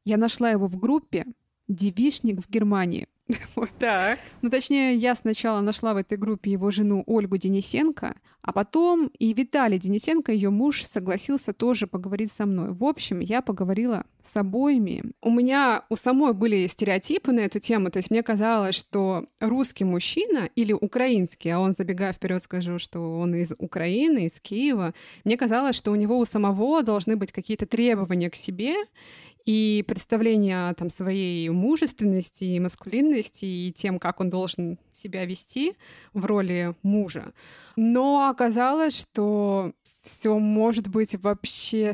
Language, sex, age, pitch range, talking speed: Russian, female, 20-39, 195-235 Hz, 150 wpm